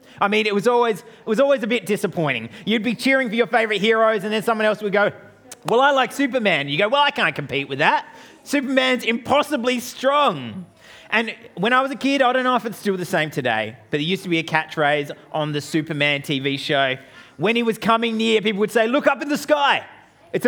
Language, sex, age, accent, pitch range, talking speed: English, male, 30-49, Australian, 150-250 Hz, 235 wpm